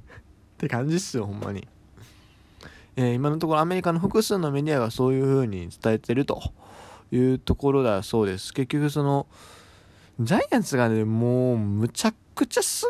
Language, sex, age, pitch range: Japanese, male, 20-39, 100-160 Hz